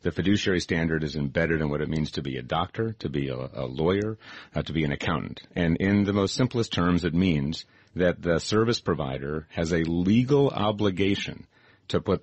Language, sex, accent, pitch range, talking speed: English, male, American, 80-110 Hz, 200 wpm